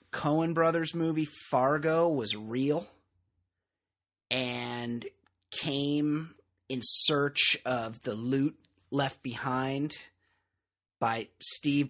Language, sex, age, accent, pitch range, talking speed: English, male, 30-49, American, 105-150 Hz, 85 wpm